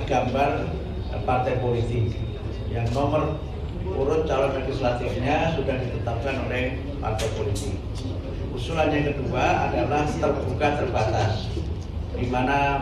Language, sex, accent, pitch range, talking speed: Indonesian, male, native, 105-140 Hz, 95 wpm